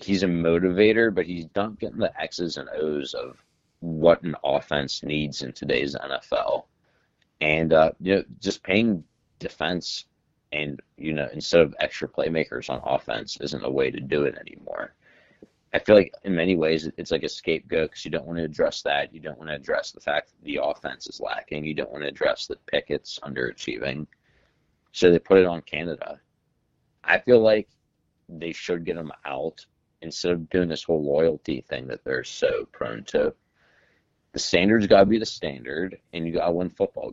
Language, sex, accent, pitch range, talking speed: English, male, American, 75-95 Hz, 190 wpm